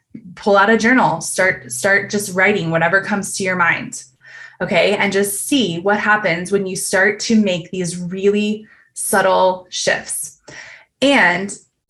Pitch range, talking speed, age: 180-215 Hz, 145 wpm, 20-39